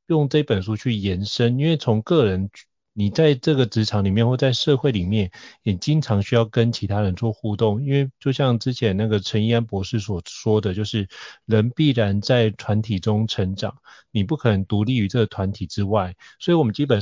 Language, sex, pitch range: Chinese, male, 105-135 Hz